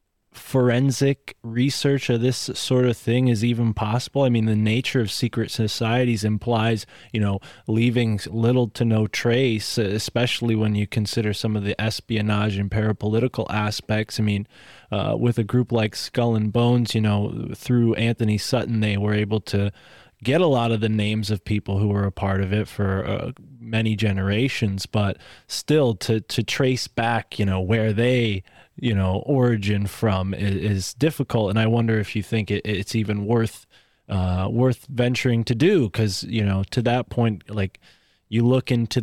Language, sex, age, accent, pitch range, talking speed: English, male, 20-39, American, 105-120 Hz, 175 wpm